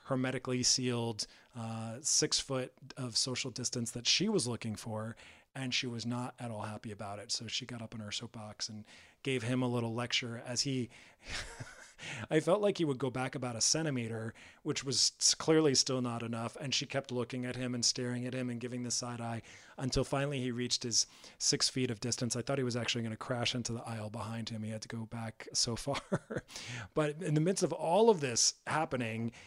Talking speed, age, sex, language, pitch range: 215 wpm, 30-49, male, English, 120-150 Hz